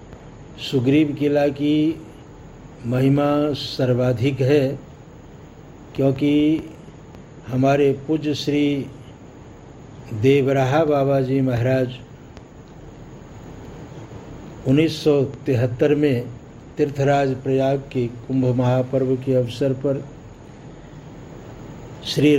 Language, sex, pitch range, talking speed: Tamil, male, 130-145 Hz, 65 wpm